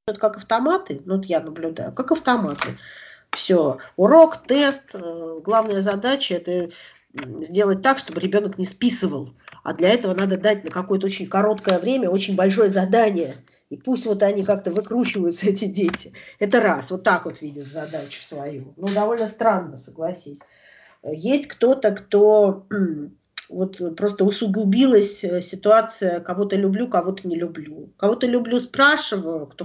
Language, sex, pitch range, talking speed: Russian, female, 175-220 Hz, 140 wpm